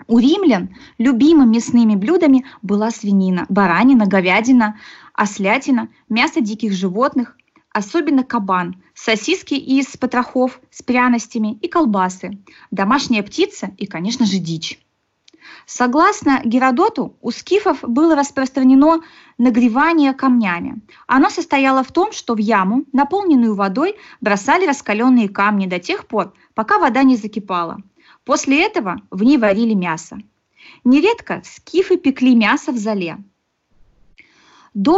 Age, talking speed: 20-39, 115 wpm